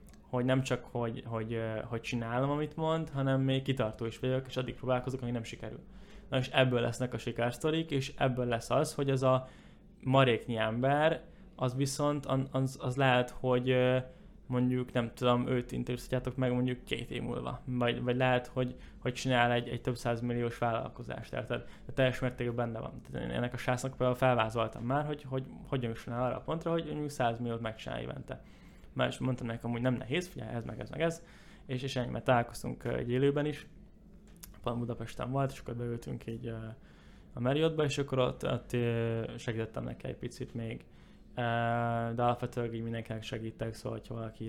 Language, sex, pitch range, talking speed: Hungarian, male, 115-130 Hz, 185 wpm